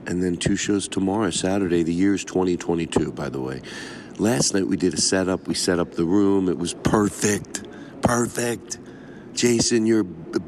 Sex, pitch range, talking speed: male, 85-105 Hz, 180 wpm